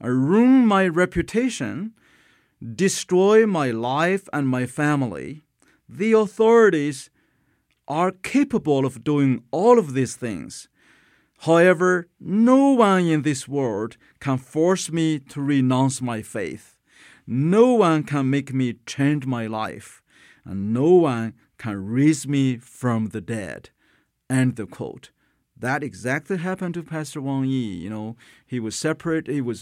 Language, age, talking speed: English, 50-69, 135 wpm